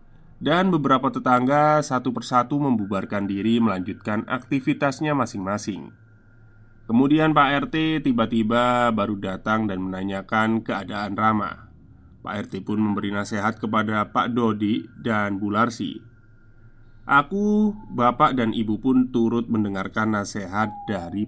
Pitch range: 105-130 Hz